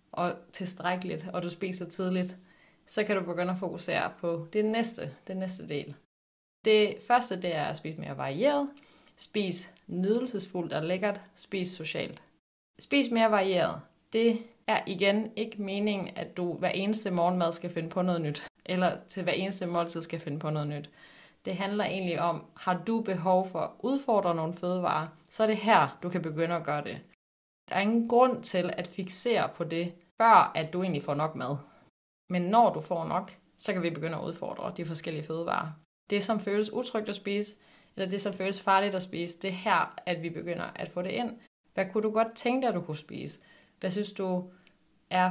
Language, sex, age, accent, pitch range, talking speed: Danish, female, 30-49, native, 170-210 Hz, 195 wpm